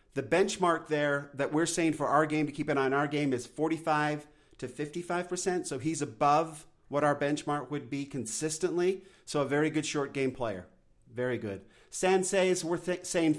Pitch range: 145-170 Hz